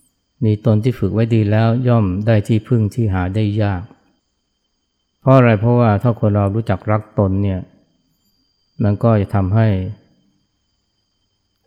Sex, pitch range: male, 100-115 Hz